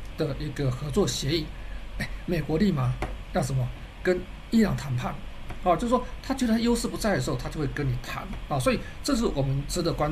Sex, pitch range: male, 135-200 Hz